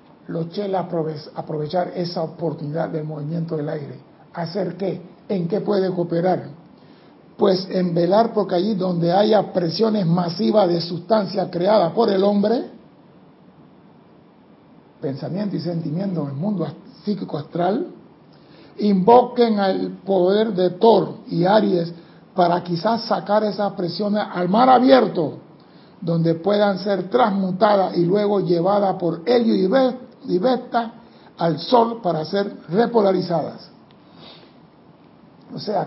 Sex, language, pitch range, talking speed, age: male, Spanish, 175-215 Hz, 120 wpm, 60-79